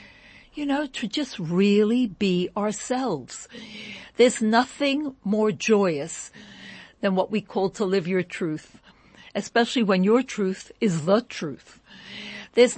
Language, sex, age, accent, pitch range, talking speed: English, female, 60-79, American, 175-235 Hz, 125 wpm